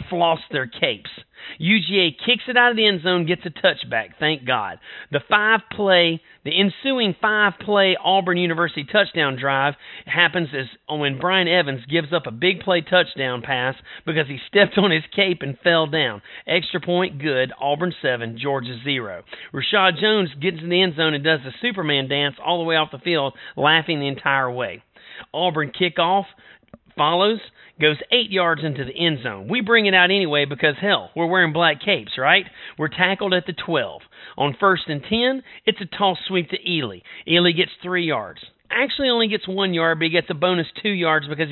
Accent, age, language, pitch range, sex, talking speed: American, 40-59, English, 145-185 Hz, male, 190 wpm